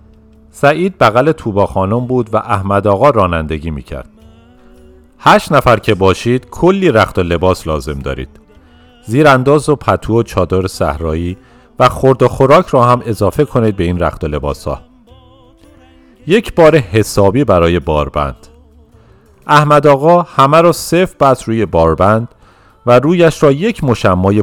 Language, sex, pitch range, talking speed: Persian, male, 85-135 Hz, 140 wpm